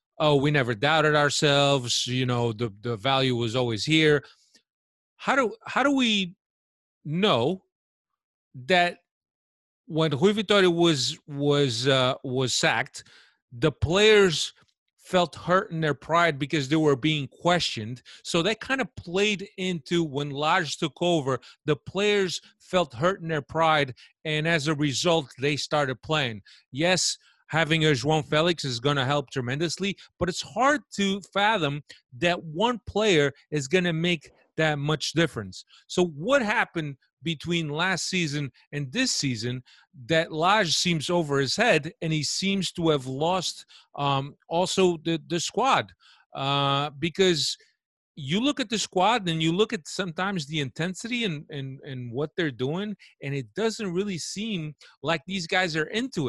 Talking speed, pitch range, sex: 155 wpm, 140-185 Hz, male